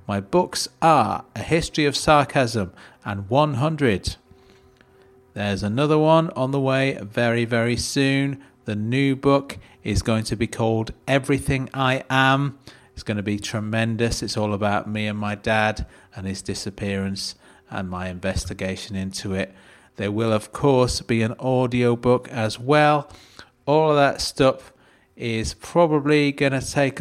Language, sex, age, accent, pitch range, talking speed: English, male, 40-59, British, 105-135 Hz, 150 wpm